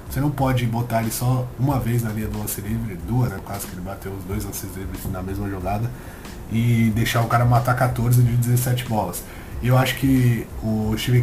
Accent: Brazilian